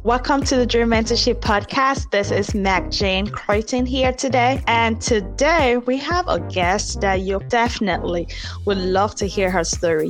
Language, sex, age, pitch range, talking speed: English, female, 20-39, 185-240 Hz, 165 wpm